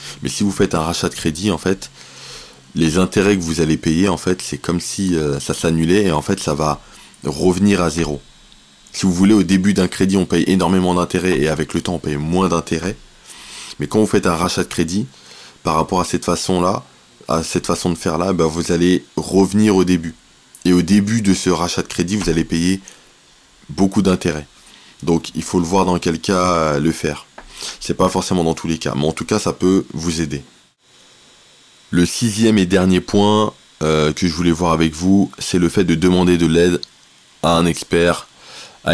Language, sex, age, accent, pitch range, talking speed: French, male, 20-39, French, 80-95 Hz, 205 wpm